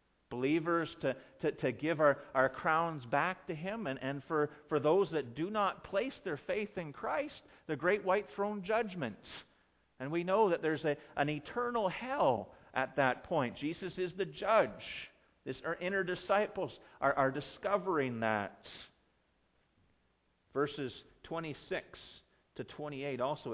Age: 40-59